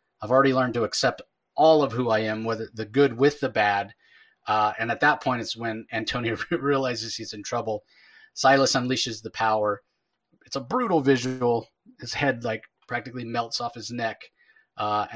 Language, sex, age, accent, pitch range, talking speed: English, male, 30-49, American, 105-130 Hz, 180 wpm